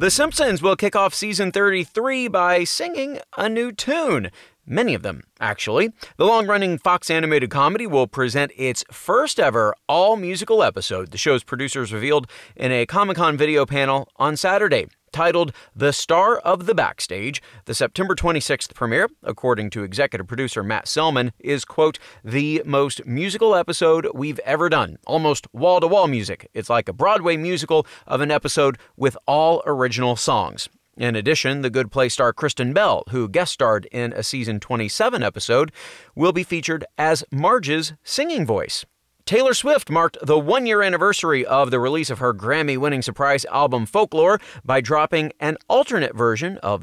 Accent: American